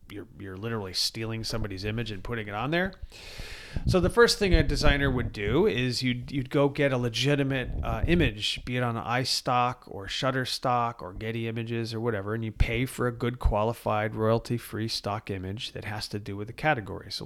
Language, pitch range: English, 110-130 Hz